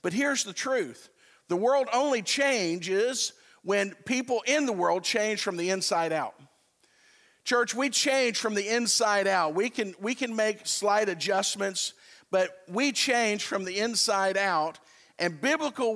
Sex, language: male, English